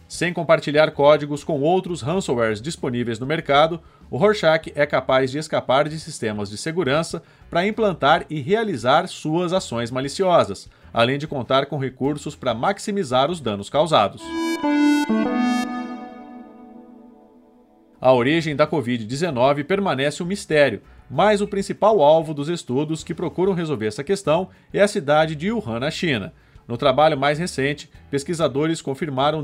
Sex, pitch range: male, 140-195 Hz